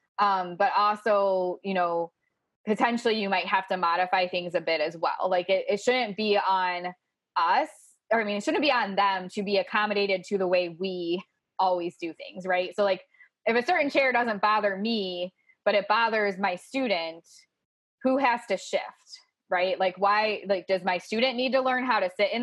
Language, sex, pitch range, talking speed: English, female, 185-235 Hz, 200 wpm